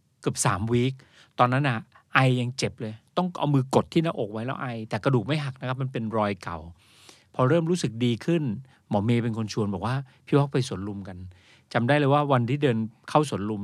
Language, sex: Thai, male